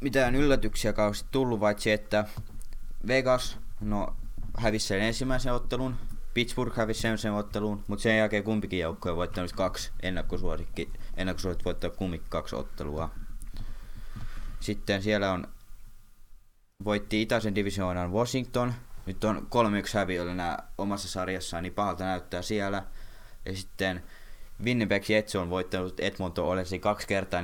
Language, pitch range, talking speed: Finnish, 90-105 Hz, 125 wpm